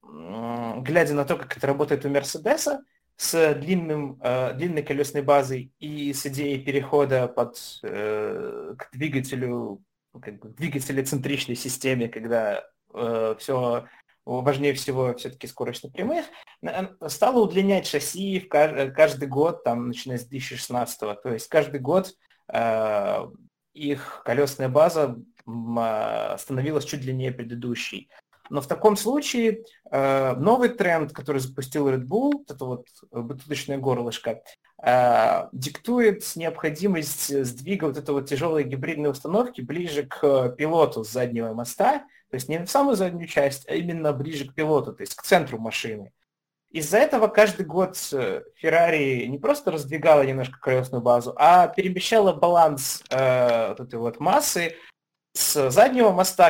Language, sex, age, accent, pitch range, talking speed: Russian, male, 20-39, native, 130-180 Hz, 130 wpm